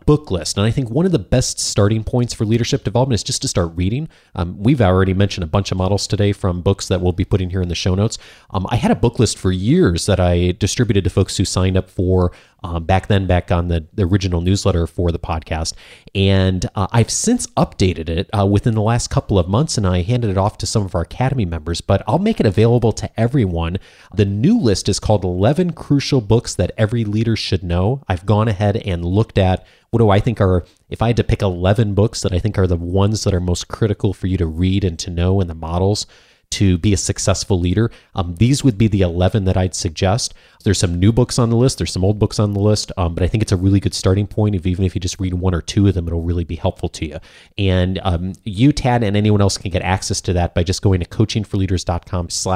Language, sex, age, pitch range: English, male, 30-49, 90-110 Hz